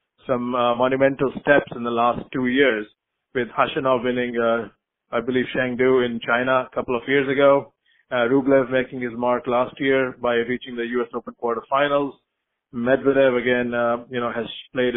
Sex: male